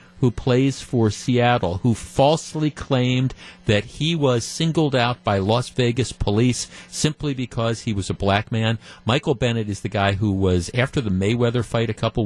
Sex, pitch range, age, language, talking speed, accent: male, 105-150 Hz, 40-59, English, 175 wpm, American